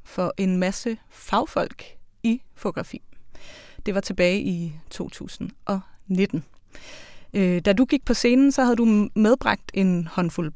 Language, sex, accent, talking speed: Danish, female, native, 125 wpm